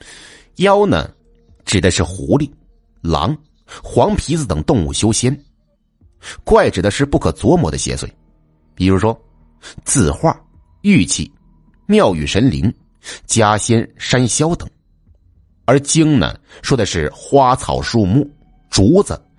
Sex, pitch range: male, 80-115 Hz